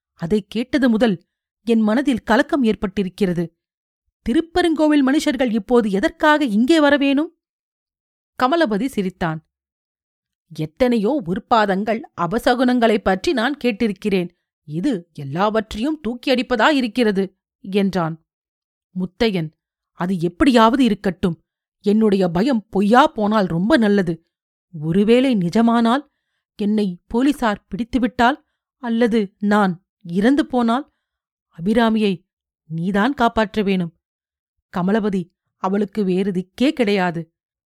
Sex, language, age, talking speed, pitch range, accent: female, Tamil, 40-59, 85 wpm, 185-250 Hz, native